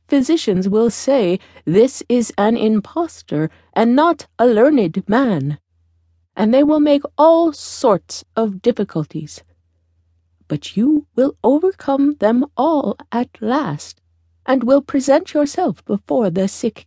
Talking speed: 125 wpm